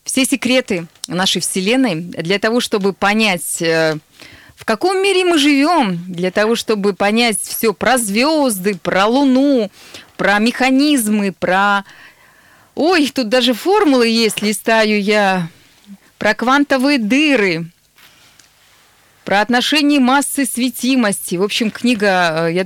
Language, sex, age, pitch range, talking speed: Russian, female, 20-39, 185-235 Hz, 115 wpm